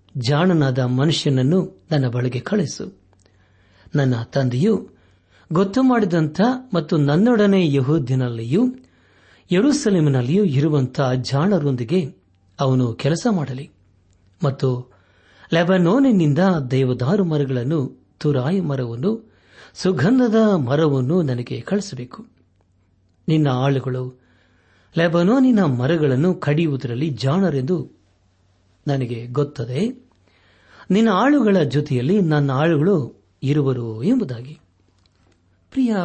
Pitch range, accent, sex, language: 120-170 Hz, native, male, Kannada